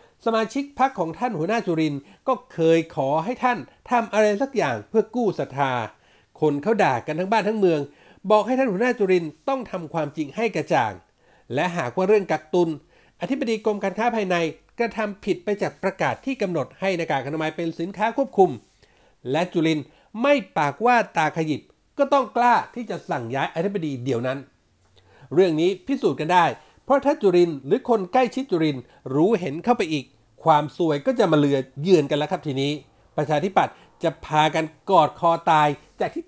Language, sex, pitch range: Thai, male, 150-220 Hz